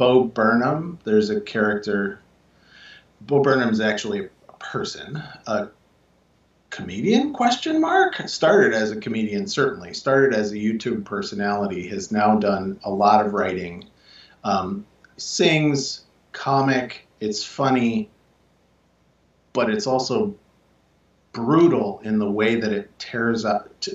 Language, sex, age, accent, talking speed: English, male, 40-59, American, 120 wpm